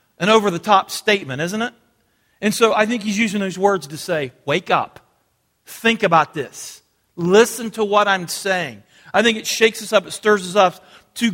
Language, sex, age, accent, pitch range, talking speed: English, male, 40-59, American, 155-210 Hz, 190 wpm